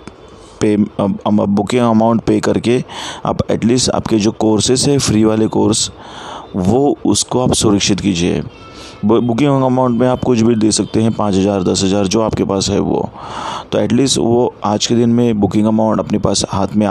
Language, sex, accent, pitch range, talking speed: Hindi, male, native, 100-110 Hz, 175 wpm